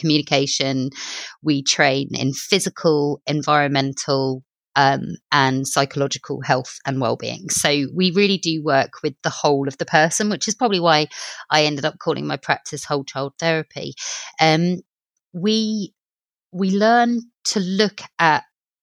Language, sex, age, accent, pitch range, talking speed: English, female, 30-49, British, 140-175 Hz, 135 wpm